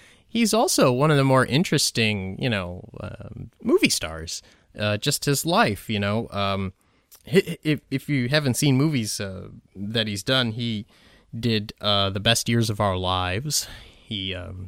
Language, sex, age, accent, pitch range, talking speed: English, male, 20-39, American, 95-140 Hz, 160 wpm